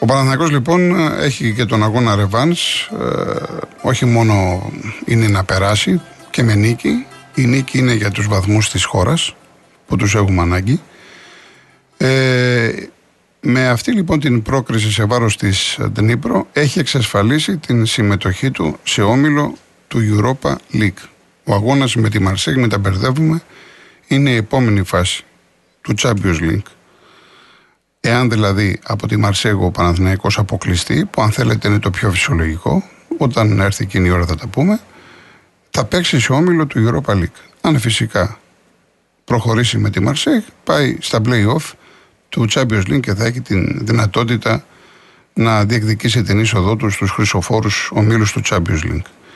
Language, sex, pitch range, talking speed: Greek, male, 105-130 Hz, 145 wpm